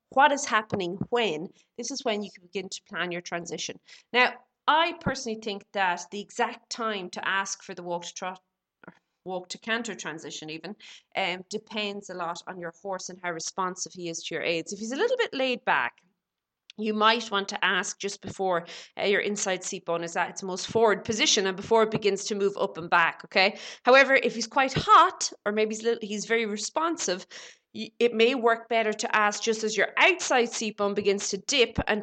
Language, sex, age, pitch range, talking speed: English, female, 30-49, 185-230 Hz, 215 wpm